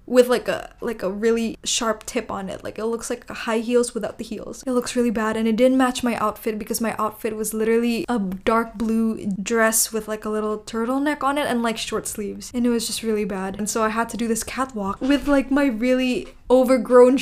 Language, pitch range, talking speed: English, 220-275 Hz, 240 wpm